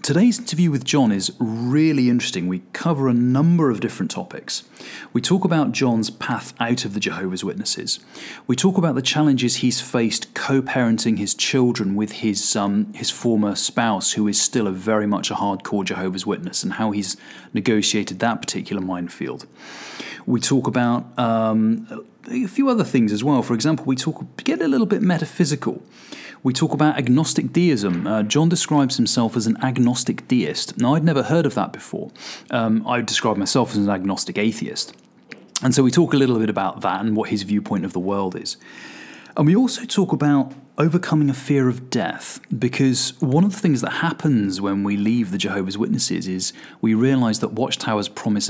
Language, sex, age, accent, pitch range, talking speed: English, male, 30-49, British, 105-150 Hz, 185 wpm